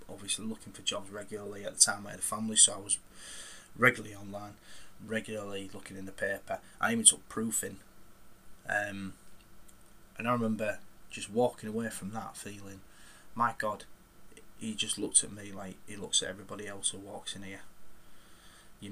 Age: 20-39